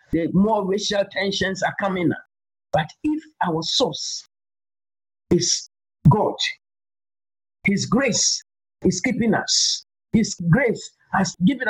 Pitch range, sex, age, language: 175-230 Hz, male, 50-69, English